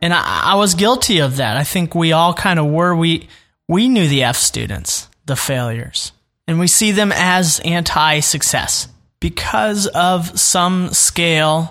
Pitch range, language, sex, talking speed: 140-185 Hz, English, male, 160 wpm